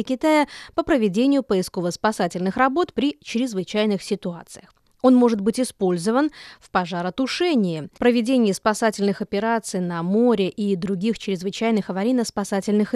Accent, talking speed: native, 105 wpm